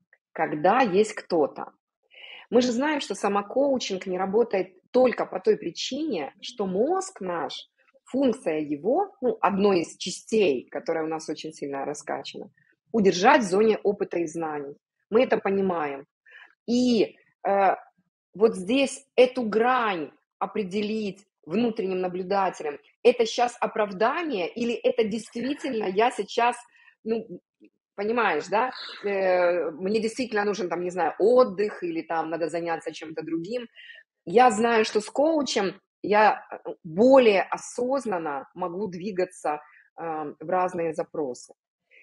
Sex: female